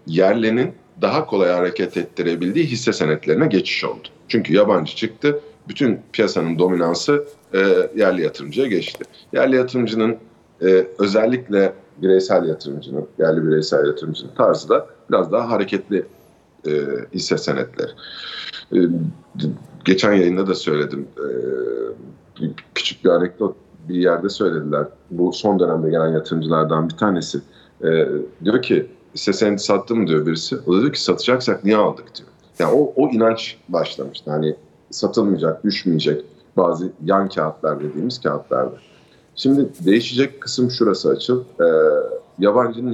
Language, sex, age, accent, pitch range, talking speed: Turkish, male, 50-69, native, 85-120 Hz, 130 wpm